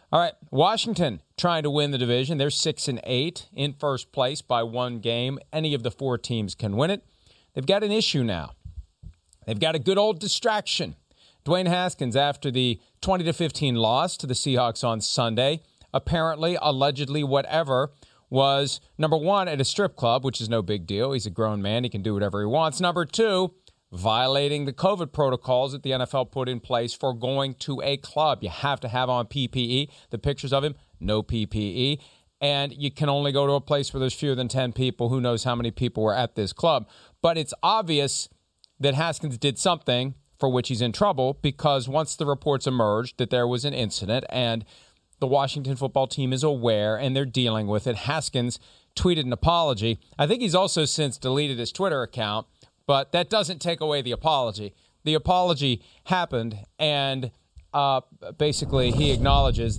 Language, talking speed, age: English, 190 wpm, 40-59